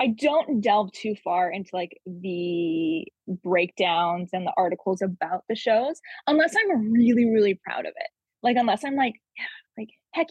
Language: English